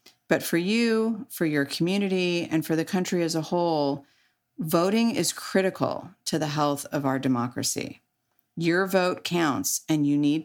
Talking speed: 160 wpm